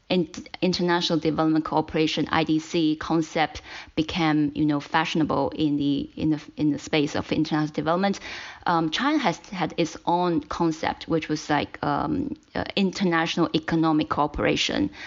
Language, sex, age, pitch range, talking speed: English, female, 20-39, 155-170 Hz, 135 wpm